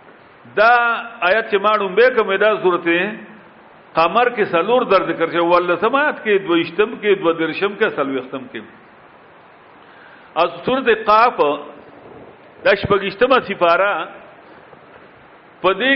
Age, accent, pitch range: 50-69, Indian, 195-255 Hz